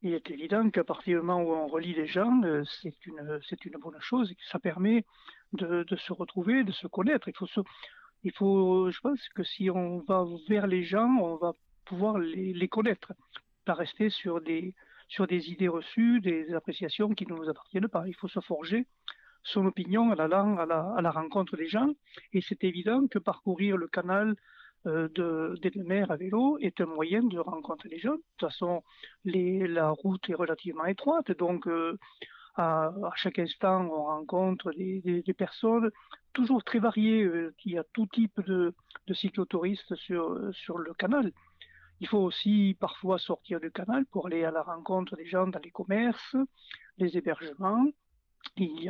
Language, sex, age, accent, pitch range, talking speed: French, male, 50-69, French, 170-210 Hz, 195 wpm